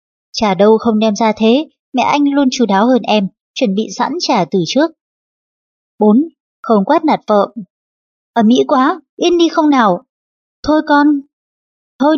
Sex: male